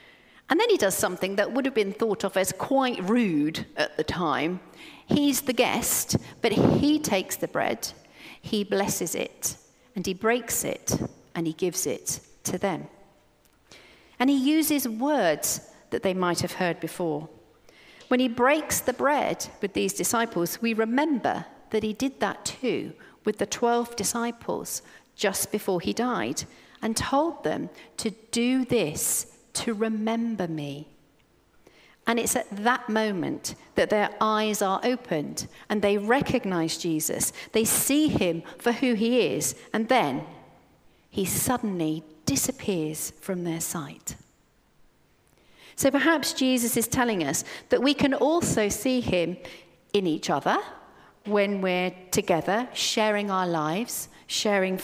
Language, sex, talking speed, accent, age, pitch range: English, female, 145 wpm, British, 40-59, 180-245 Hz